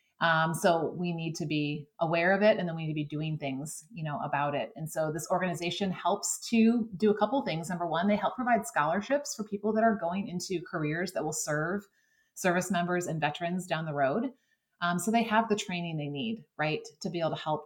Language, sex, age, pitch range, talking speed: English, female, 30-49, 155-210 Hz, 230 wpm